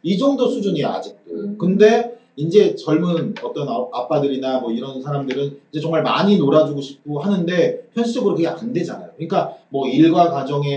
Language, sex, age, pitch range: Korean, male, 40-59, 150-230 Hz